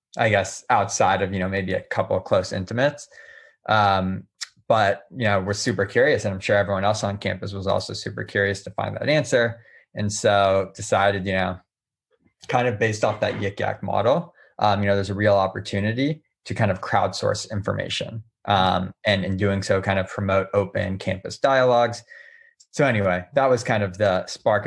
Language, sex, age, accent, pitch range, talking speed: English, male, 20-39, American, 95-110 Hz, 190 wpm